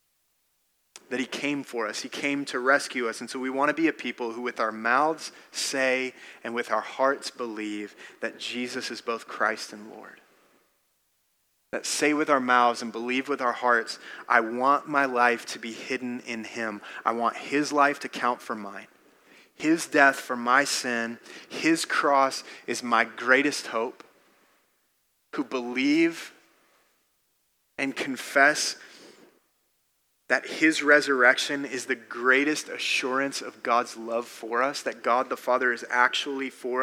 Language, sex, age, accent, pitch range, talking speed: English, male, 30-49, American, 120-140 Hz, 155 wpm